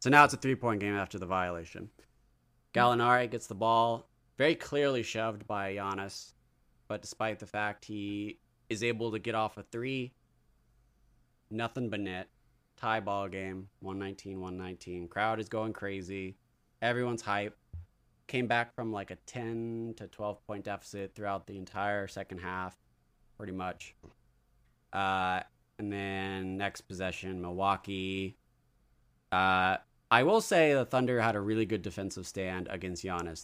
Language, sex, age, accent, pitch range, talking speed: English, male, 20-39, American, 95-115 Hz, 140 wpm